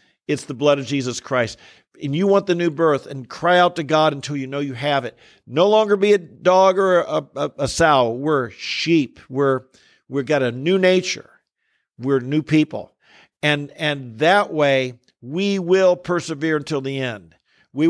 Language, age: English, 50-69